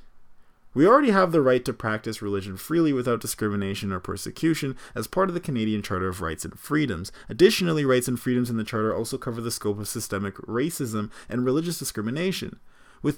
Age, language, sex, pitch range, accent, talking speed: 20-39, English, male, 100-135 Hz, American, 185 wpm